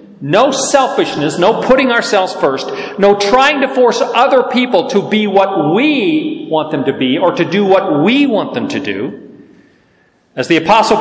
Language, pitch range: English, 155-220 Hz